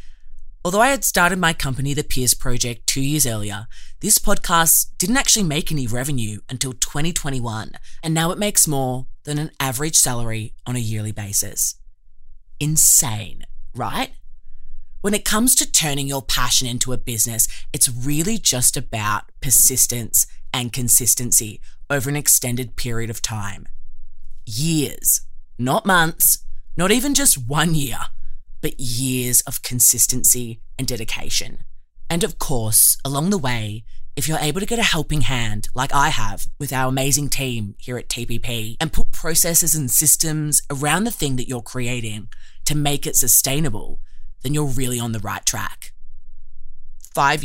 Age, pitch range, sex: 20-39, 115-150 Hz, female